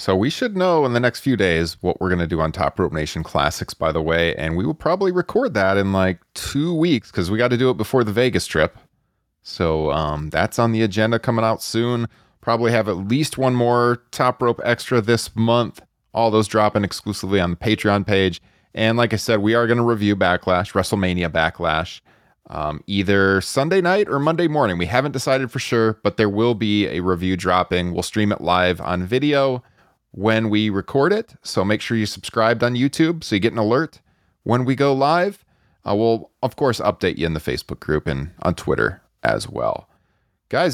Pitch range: 90-125 Hz